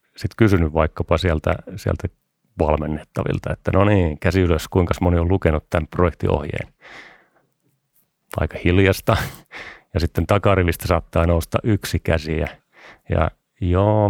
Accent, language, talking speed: native, Finnish, 120 wpm